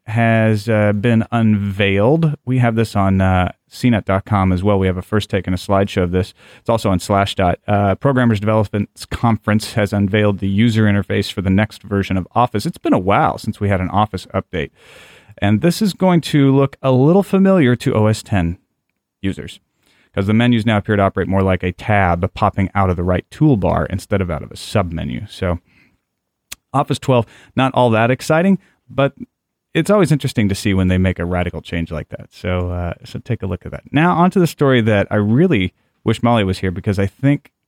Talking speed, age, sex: 210 wpm, 30-49, male